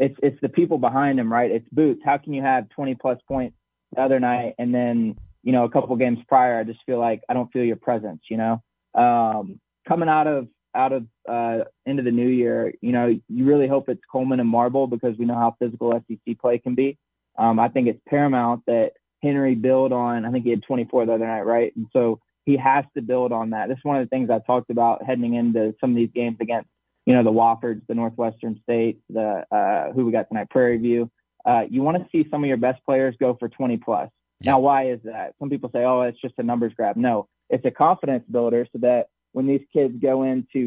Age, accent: 20-39, American